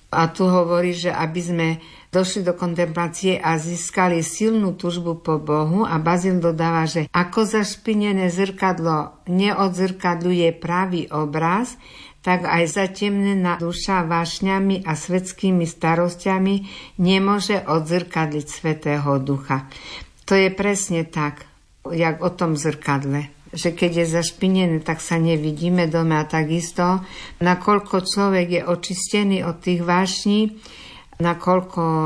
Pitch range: 160-190 Hz